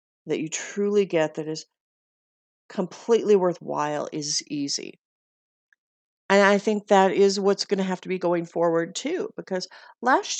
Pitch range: 170-225 Hz